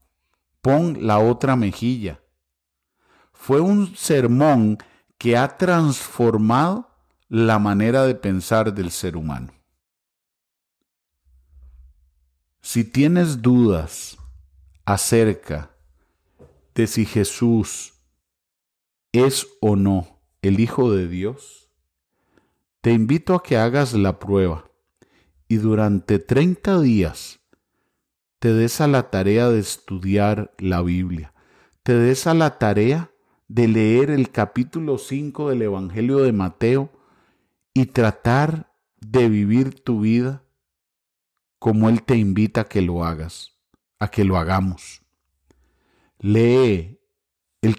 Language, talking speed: English, 105 wpm